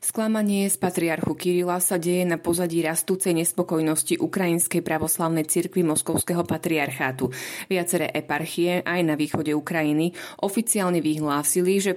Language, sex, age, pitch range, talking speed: Slovak, female, 30-49, 155-185 Hz, 120 wpm